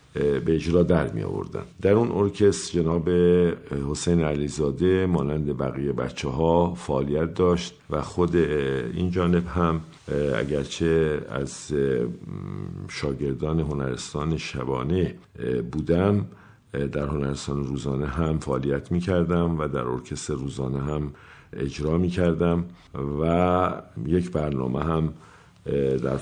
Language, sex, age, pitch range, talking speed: Persian, male, 50-69, 70-90 Hz, 110 wpm